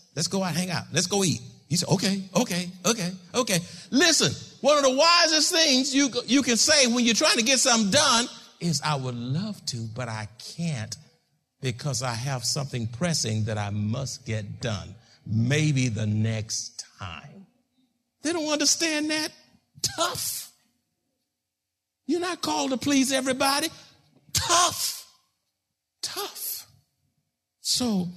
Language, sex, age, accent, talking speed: English, male, 50-69, American, 145 wpm